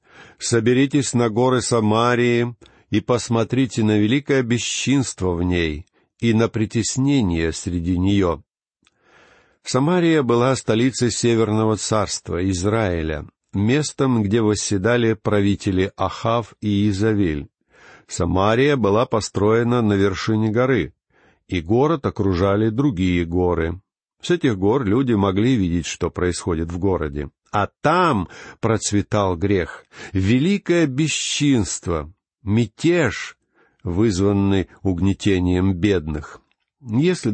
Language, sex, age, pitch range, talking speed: Russian, male, 50-69, 95-125 Hz, 100 wpm